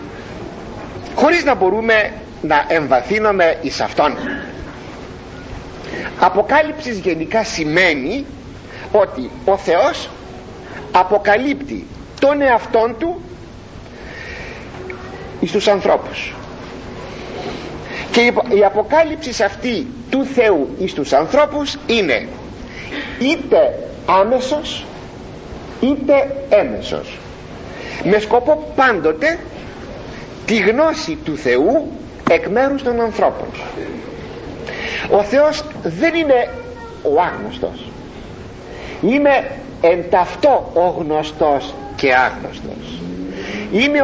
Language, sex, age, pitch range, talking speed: Greek, male, 50-69, 185-275 Hz, 80 wpm